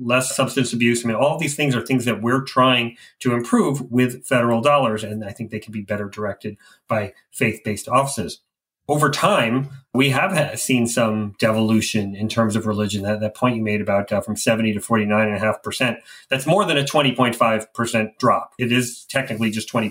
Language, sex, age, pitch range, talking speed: English, male, 30-49, 110-135 Hz, 185 wpm